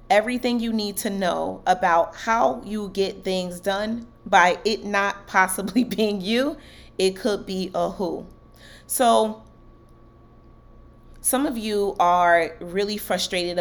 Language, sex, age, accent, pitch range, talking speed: English, female, 30-49, American, 170-210 Hz, 130 wpm